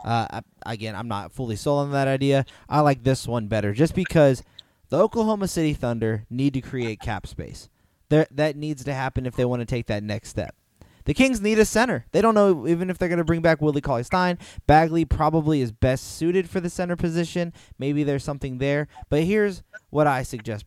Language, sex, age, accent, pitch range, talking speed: English, male, 20-39, American, 120-155 Hz, 210 wpm